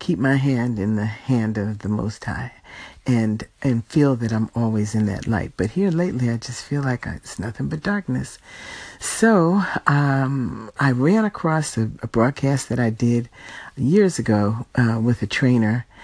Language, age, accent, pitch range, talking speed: English, 50-69, American, 115-145 Hz, 175 wpm